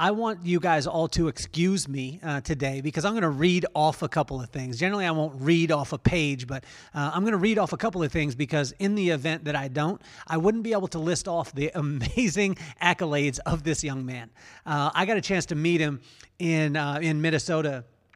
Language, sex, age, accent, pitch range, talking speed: English, male, 40-59, American, 140-170 Hz, 235 wpm